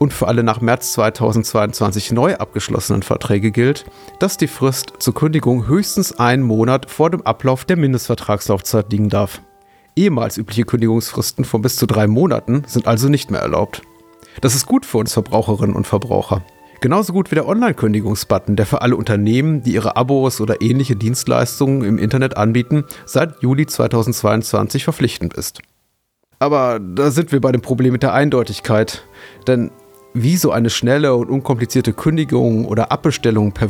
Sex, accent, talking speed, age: male, German, 160 wpm, 30-49